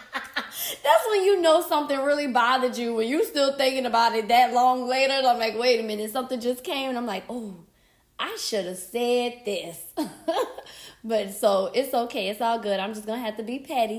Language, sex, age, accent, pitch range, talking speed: English, female, 20-39, American, 225-275 Hz, 215 wpm